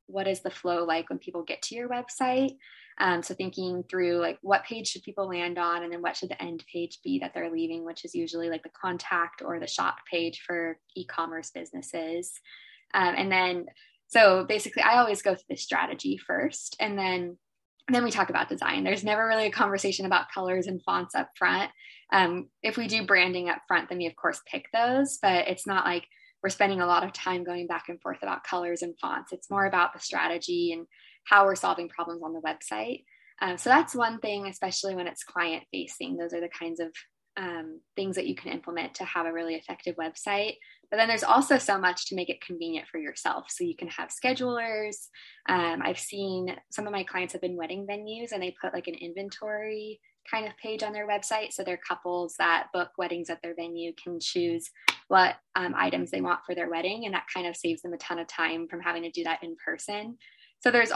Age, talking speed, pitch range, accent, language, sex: 10-29, 220 wpm, 175-220 Hz, American, English, female